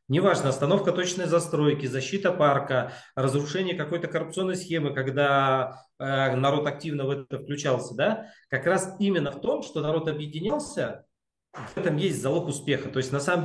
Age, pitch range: 40-59, 135-170 Hz